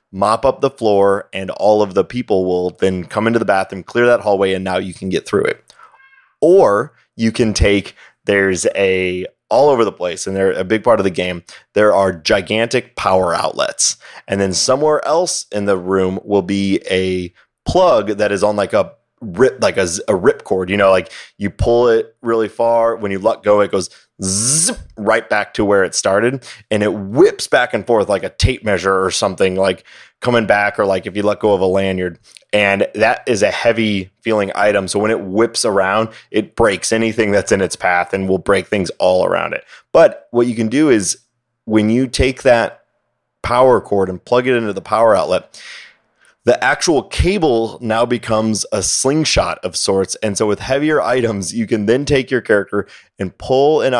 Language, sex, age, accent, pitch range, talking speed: English, male, 30-49, American, 95-120 Hz, 205 wpm